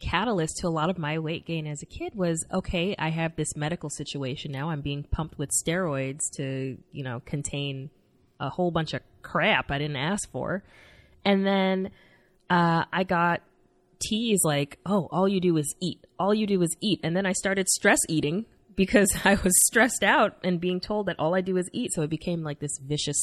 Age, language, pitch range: 20-39, English, 150-185 Hz